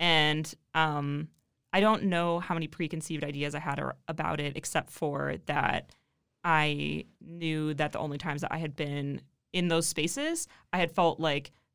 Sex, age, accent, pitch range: female, 20-39, American, 155-185 Hz